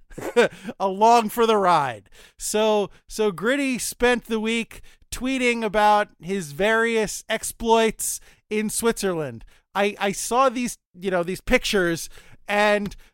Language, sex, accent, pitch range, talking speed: English, male, American, 180-235 Hz, 120 wpm